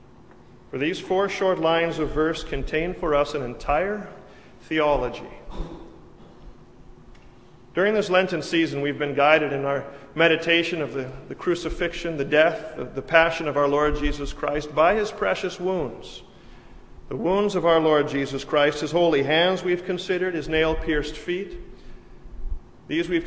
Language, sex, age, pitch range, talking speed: English, male, 40-59, 140-180 Hz, 145 wpm